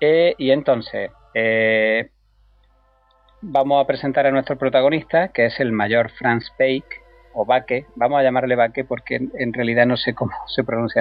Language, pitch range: Spanish, 110-135 Hz